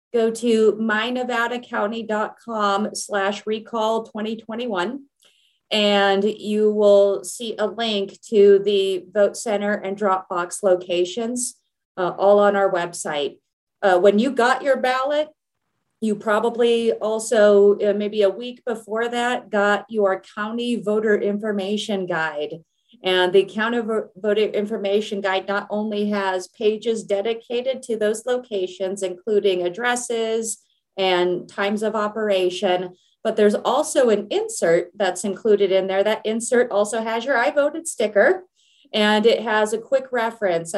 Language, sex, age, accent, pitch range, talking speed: English, female, 30-49, American, 195-225 Hz, 130 wpm